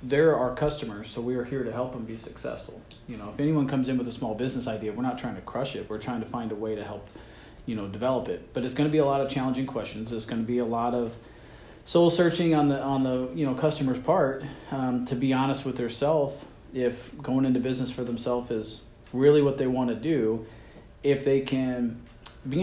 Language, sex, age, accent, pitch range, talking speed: English, male, 40-59, American, 115-130 Hz, 245 wpm